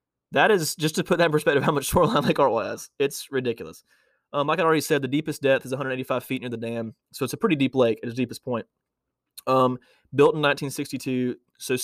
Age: 20-39